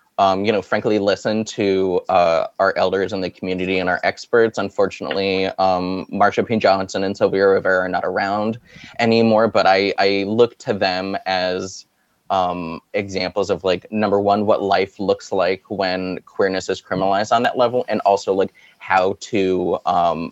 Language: English